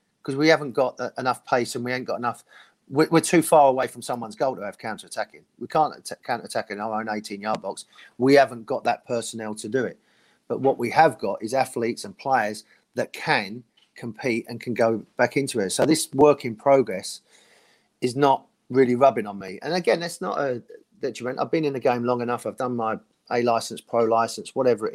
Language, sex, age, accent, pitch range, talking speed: English, male, 40-59, British, 110-135 Hz, 210 wpm